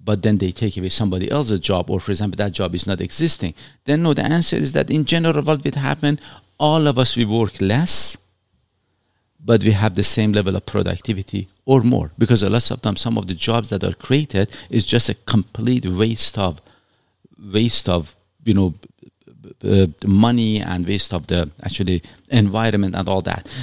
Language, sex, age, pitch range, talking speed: English, male, 50-69, 95-125 Hz, 195 wpm